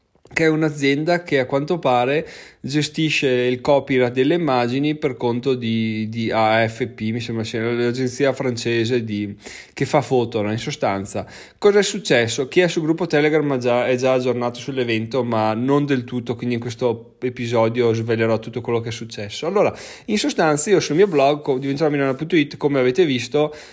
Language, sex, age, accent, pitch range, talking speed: Italian, male, 20-39, native, 120-145 Hz, 170 wpm